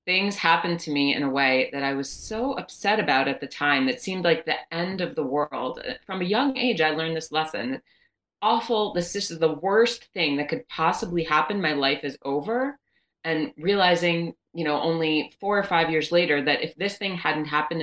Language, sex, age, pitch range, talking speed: English, female, 30-49, 145-185 Hz, 210 wpm